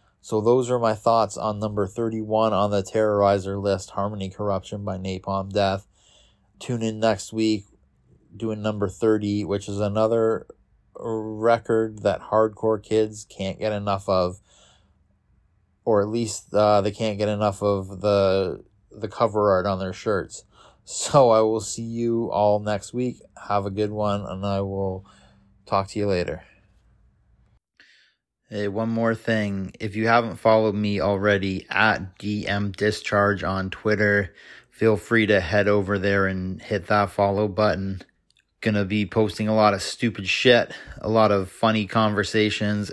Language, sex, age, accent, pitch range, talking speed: English, male, 20-39, American, 100-110 Hz, 150 wpm